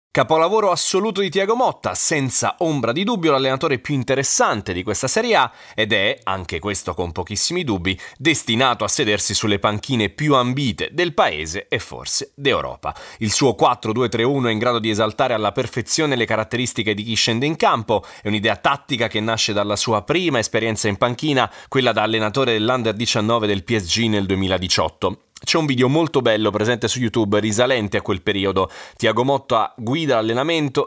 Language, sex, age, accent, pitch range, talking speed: Italian, male, 30-49, native, 105-135 Hz, 170 wpm